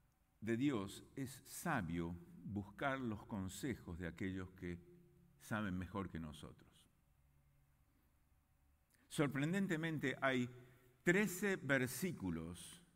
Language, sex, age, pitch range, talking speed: English, male, 50-69, 100-165 Hz, 85 wpm